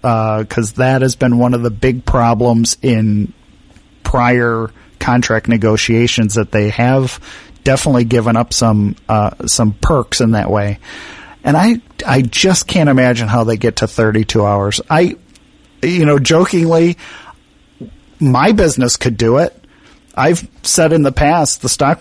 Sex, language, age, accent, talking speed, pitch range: male, English, 40-59, American, 155 wpm, 115-140 Hz